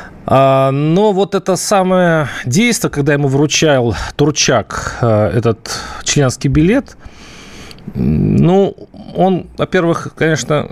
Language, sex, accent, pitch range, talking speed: Russian, male, native, 110-160 Hz, 90 wpm